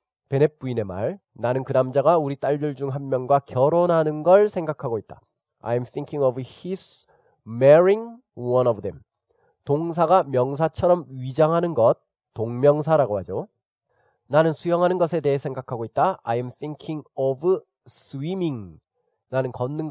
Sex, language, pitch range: male, Korean, 125-175 Hz